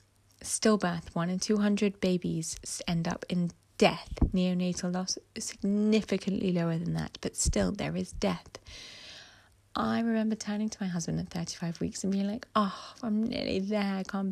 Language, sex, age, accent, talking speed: English, female, 20-39, British, 165 wpm